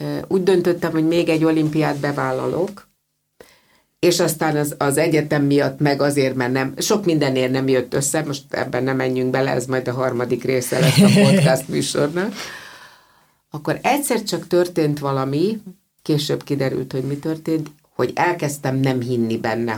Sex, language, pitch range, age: female, Hungarian, 130-185 Hz, 50-69